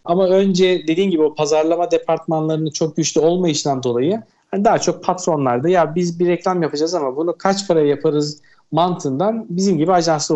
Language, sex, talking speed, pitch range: Turkish, male, 170 wpm, 155-200 Hz